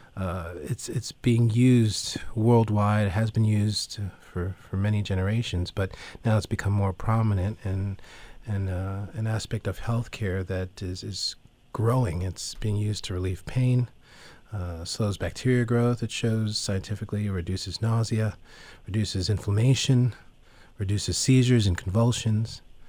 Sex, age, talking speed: male, 40-59, 135 wpm